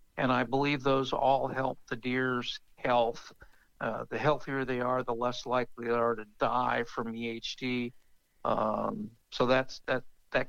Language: English